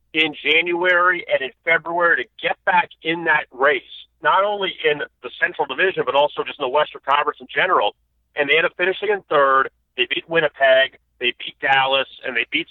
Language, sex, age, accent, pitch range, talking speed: English, male, 40-59, American, 125-160 Hz, 200 wpm